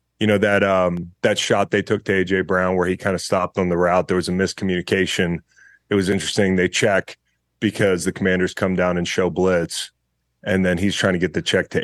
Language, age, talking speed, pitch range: English, 30-49, 230 wpm, 90-105 Hz